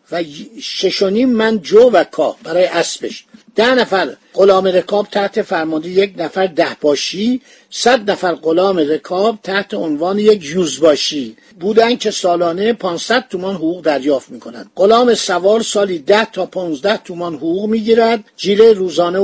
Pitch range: 180-230 Hz